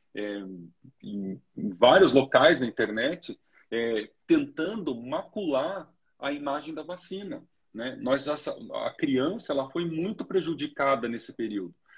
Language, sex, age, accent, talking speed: Portuguese, male, 40-59, Brazilian, 125 wpm